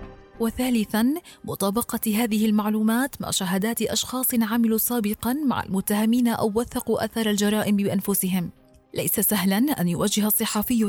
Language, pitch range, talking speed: Arabic, 200-225 Hz, 115 wpm